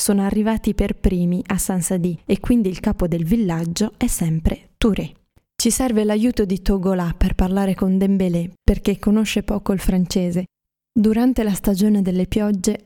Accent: native